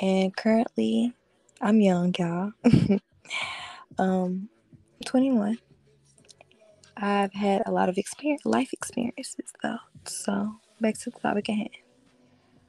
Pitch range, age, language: 200-235 Hz, 20-39, English